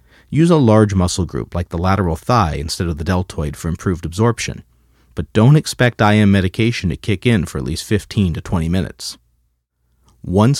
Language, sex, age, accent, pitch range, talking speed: English, male, 40-59, American, 80-115 Hz, 180 wpm